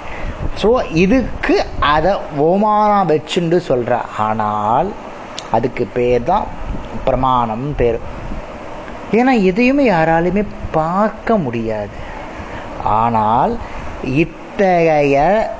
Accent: native